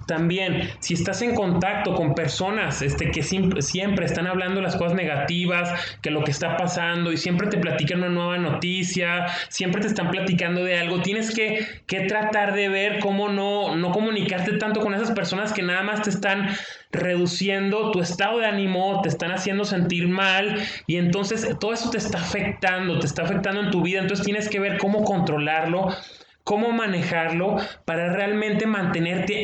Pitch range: 170-200 Hz